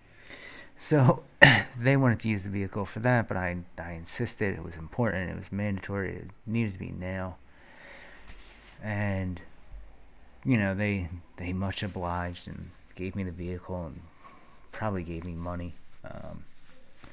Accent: American